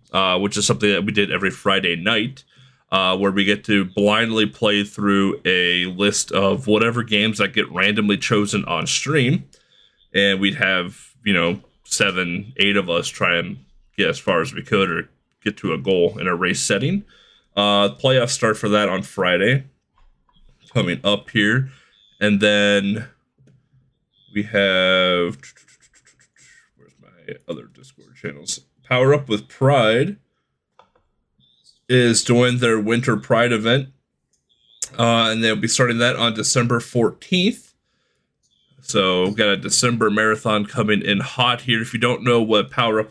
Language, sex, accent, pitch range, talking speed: English, male, American, 100-120 Hz, 155 wpm